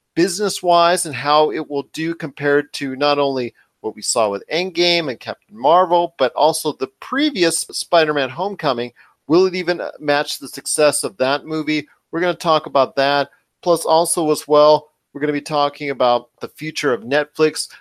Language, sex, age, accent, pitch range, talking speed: English, male, 40-59, American, 135-175 Hz, 180 wpm